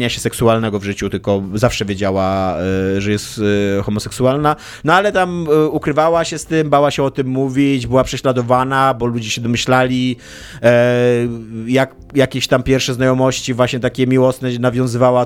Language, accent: Polish, native